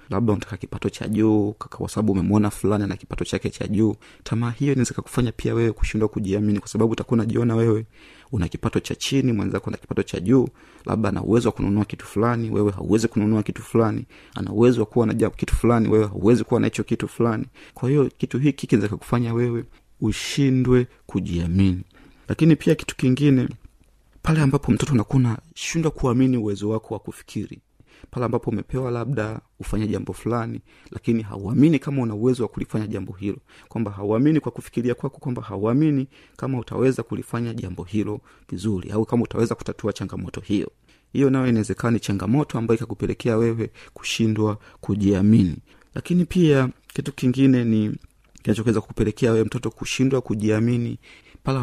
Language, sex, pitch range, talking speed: Swahili, male, 105-125 Hz, 165 wpm